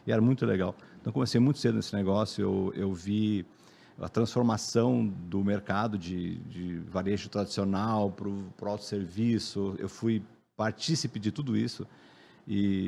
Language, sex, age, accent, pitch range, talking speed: Portuguese, male, 50-69, Brazilian, 95-110 Hz, 145 wpm